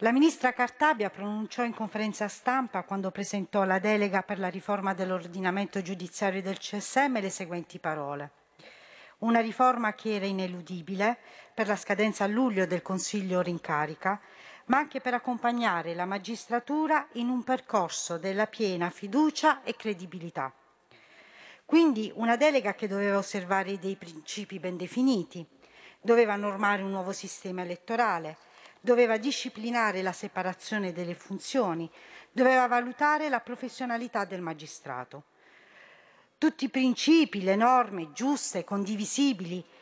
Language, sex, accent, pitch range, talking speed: Italian, female, native, 190-250 Hz, 125 wpm